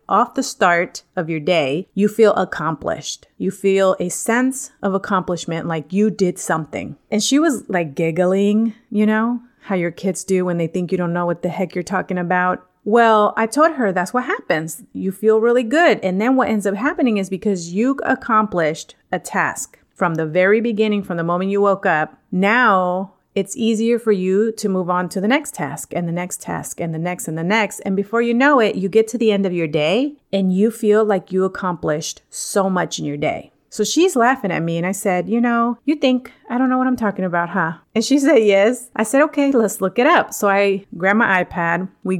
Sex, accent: female, American